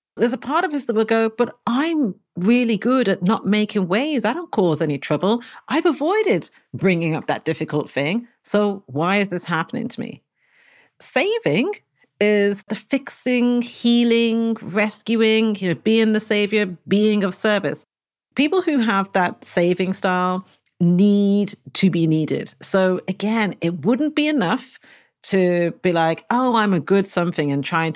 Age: 40-59